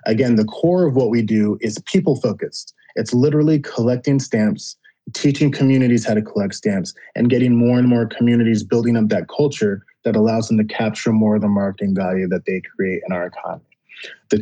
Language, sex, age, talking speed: English, male, 20-39, 190 wpm